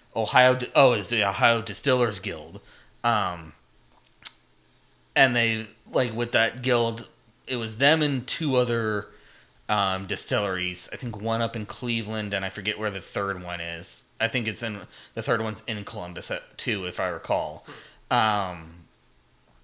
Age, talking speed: 30-49, 155 wpm